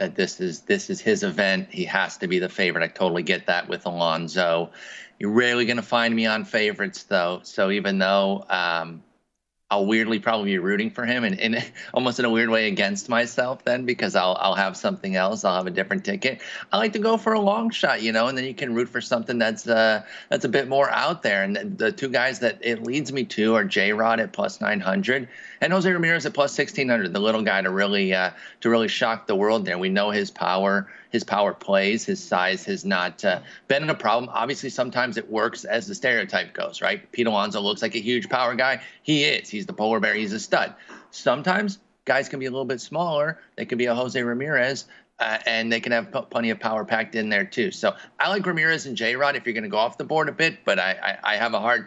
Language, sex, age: English, male, 30-49